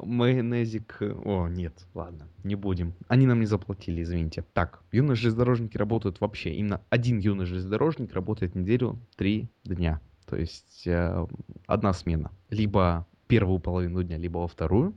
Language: Russian